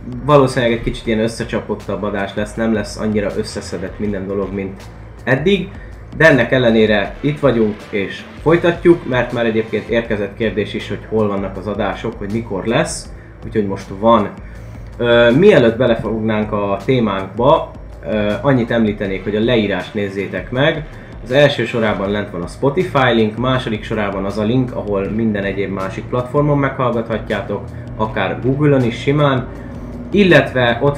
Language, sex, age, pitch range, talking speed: Hungarian, male, 30-49, 105-130 Hz, 150 wpm